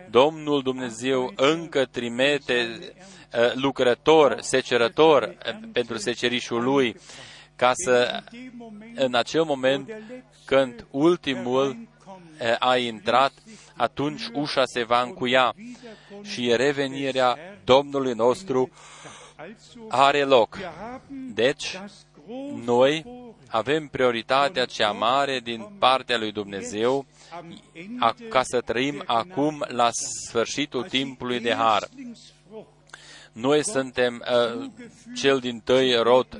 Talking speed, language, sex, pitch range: 90 wpm, Romanian, male, 125-155 Hz